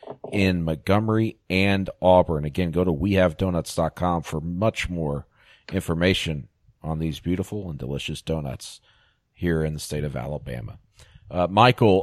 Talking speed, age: 130 wpm, 40-59